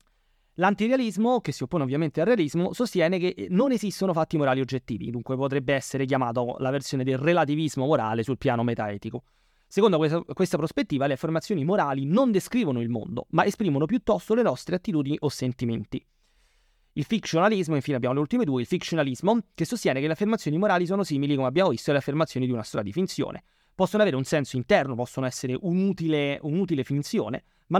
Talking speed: 175 wpm